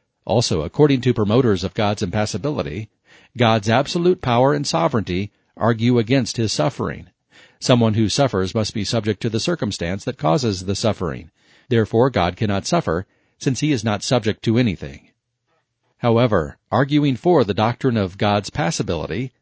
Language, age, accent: English, 40-59, American